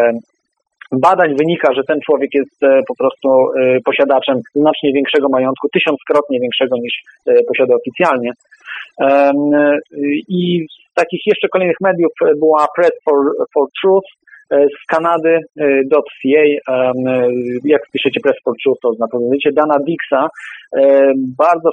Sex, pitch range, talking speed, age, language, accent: male, 140-170 Hz, 115 wpm, 40-59, Polish, native